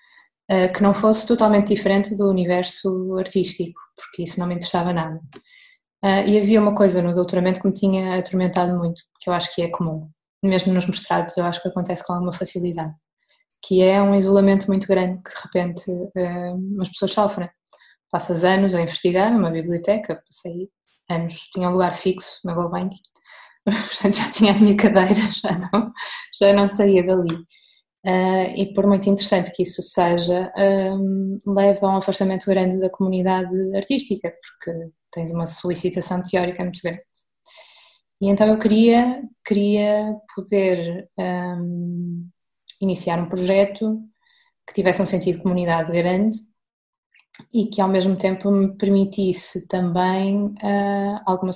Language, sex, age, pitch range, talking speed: Portuguese, female, 20-39, 180-200 Hz, 145 wpm